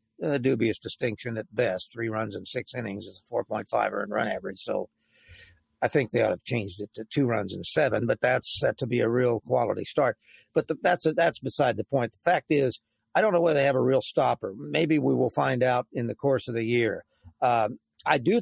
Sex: male